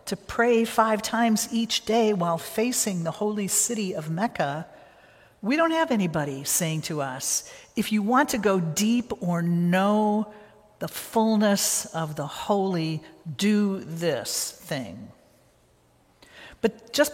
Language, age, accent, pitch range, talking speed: English, 50-69, American, 165-220 Hz, 135 wpm